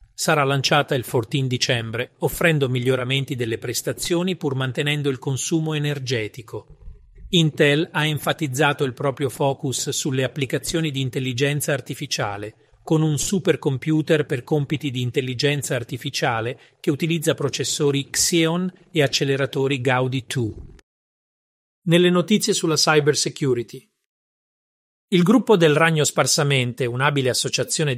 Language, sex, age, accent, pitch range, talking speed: Italian, male, 40-59, native, 130-160 Hz, 110 wpm